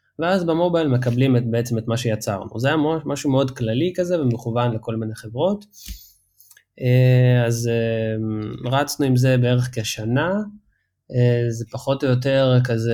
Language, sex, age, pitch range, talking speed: Hebrew, male, 20-39, 115-140 Hz, 135 wpm